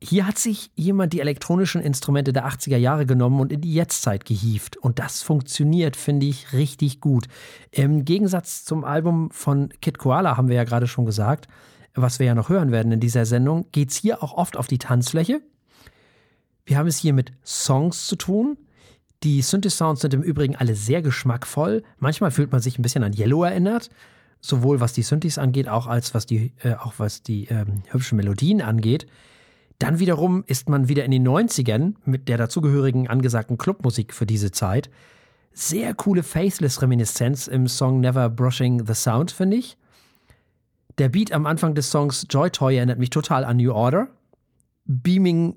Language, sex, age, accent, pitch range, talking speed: German, male, 40-59, German, 120-165 Hz, 180 wpm